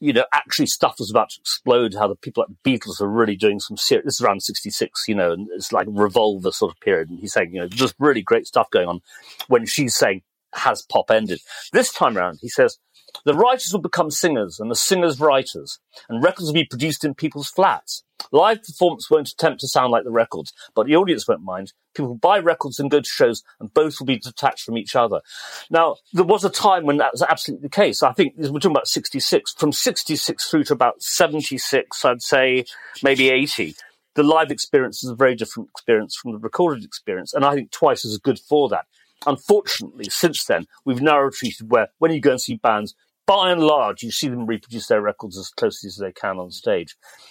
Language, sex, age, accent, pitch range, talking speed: English, male, 40-59, British, 125-175 Hz, 225 wpm